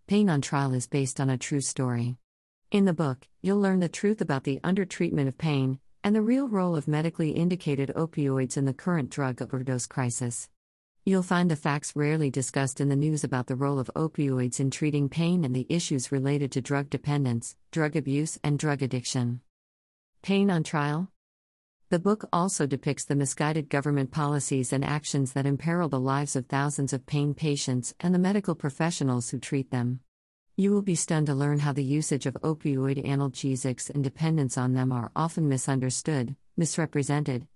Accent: American